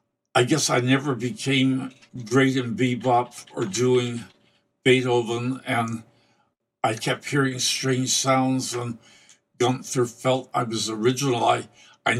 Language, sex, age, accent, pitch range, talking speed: English, male, 60-79, American, 115-130 Hz, 125 wpm